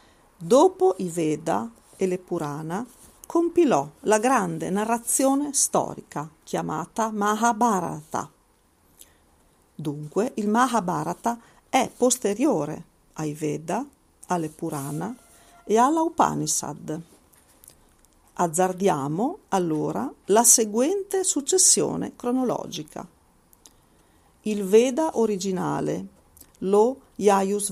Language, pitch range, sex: Italian, 155-245 Hz, female